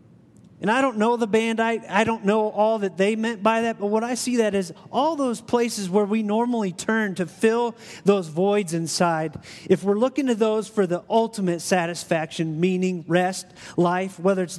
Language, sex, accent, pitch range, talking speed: English, male, American, 180-230 Hz, 200 wpm